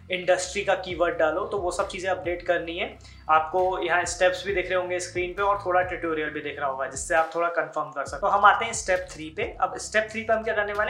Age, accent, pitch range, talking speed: 20-39, native, 165-205 Hz, 270 wpm